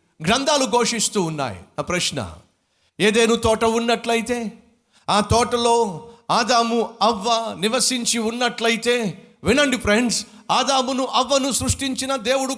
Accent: native